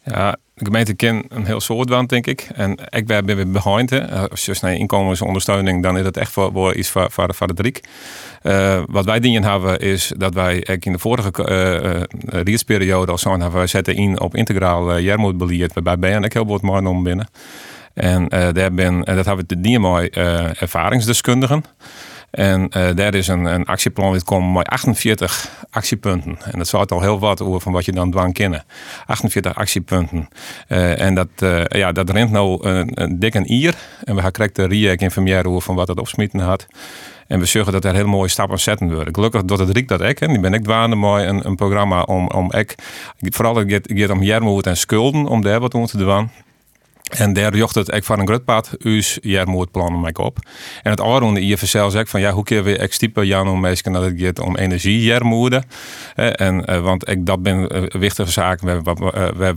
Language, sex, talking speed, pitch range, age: Dutch, male, 205 wpm, 90-110 Hz, 40-59